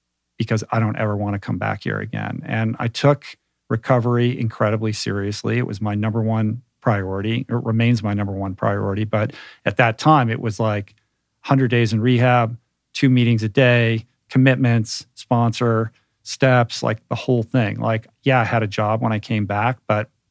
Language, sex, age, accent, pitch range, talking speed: English, male, 50-69, American, 105-120 Hz, 175 wpm